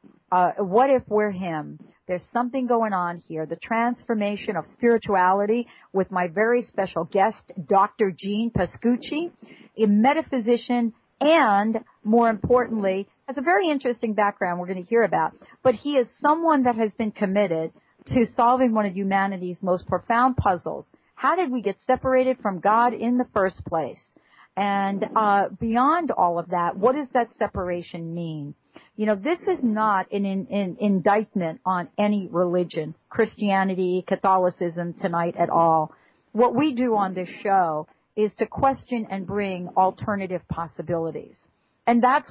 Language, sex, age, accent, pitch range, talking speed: English, female, 50-69, American, 180-235 Hz, 150 wpm